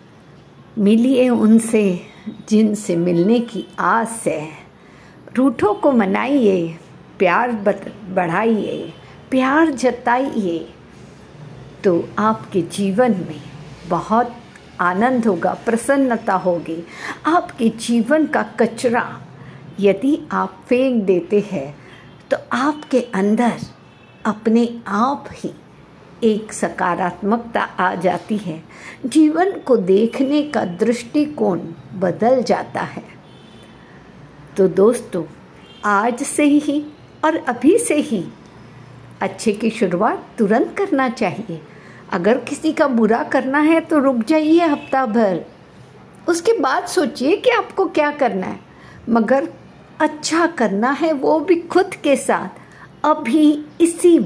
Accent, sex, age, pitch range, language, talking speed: native, female, 60-79, 195-285 Hz, Hindi, 105 wpm